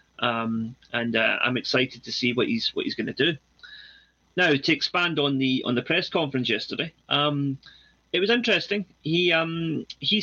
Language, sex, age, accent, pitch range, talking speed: English, male, 30-49, British, 120-150 Hz, 180 wpm